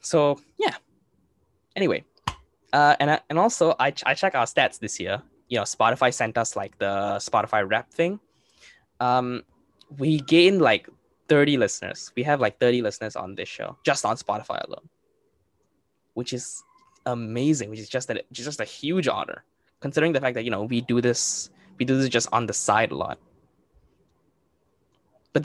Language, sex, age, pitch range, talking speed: English, male, 10-29, 120-155 Hz, 175 wpm